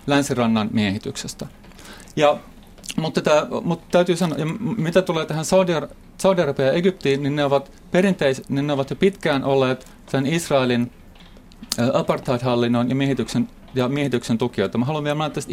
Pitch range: 125-165 Hz